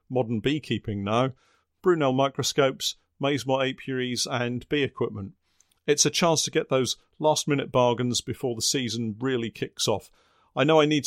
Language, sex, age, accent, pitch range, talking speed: English, male, 40-59, British, 120-150 Hz, 165 wpm